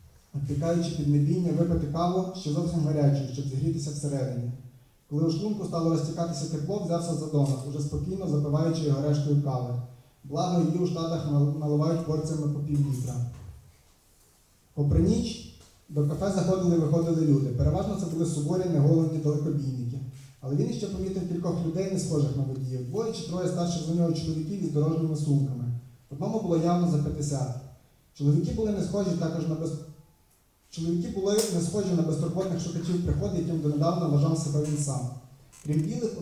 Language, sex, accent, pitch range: Ukrainian, male, native, 145-175 Hz